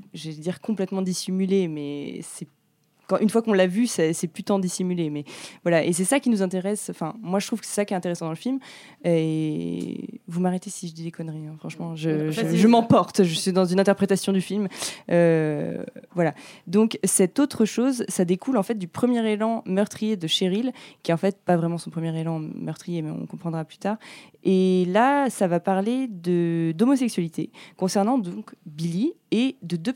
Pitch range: 165-210 Hz